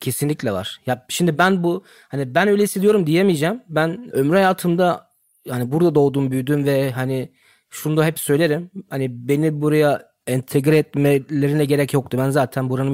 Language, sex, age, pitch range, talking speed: Turkish, male, 30-49, 120-150 Hz, 160 wpm